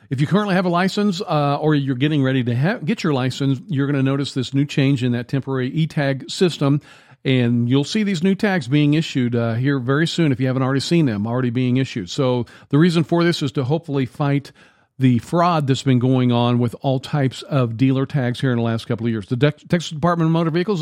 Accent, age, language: American, 50-69, English